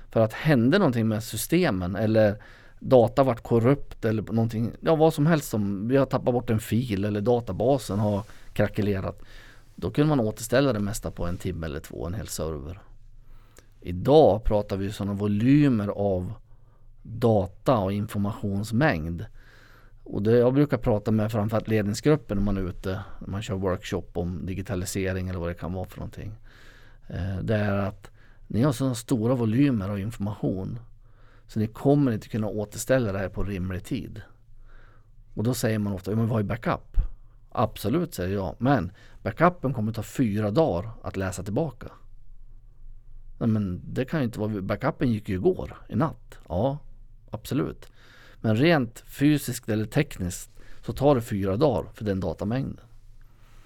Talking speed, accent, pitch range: 165 wpm, native, 100-120 Hz